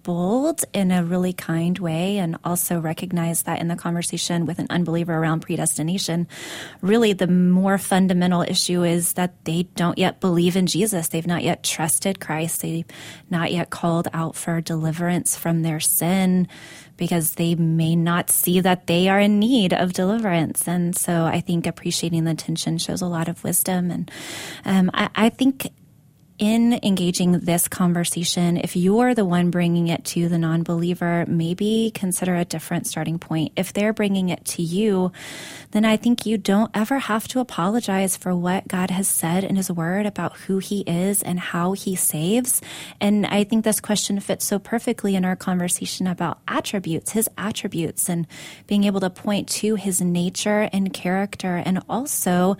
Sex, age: female, 20-39